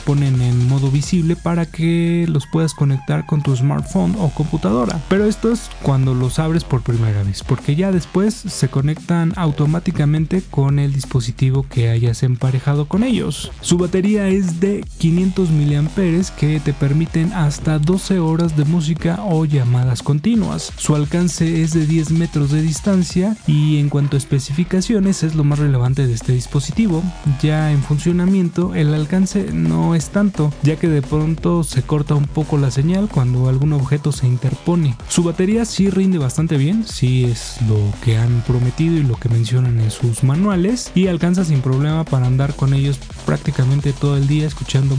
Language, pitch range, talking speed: Spanish, 140-175 Hz, 175 wpm